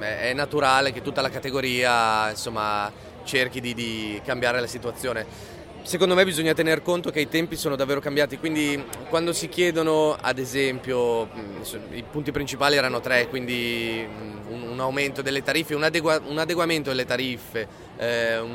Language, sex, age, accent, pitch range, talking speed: Italian, male, 30-49, native, 115-145 Hz, 155 wpm